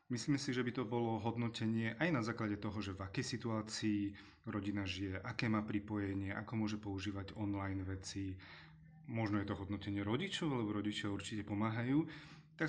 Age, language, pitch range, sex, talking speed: 30-49, Slovak, 100-115 Hz, male, 165 wpm